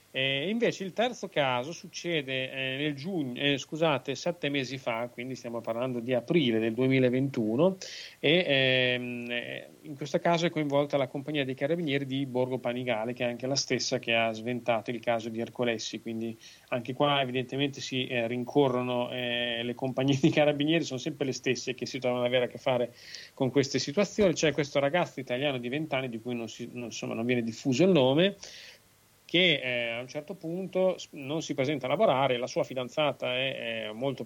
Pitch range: 125-160 Hz